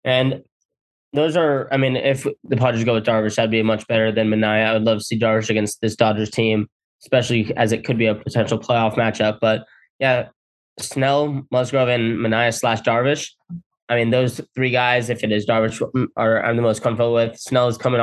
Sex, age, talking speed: male, 10-29, 205 wpm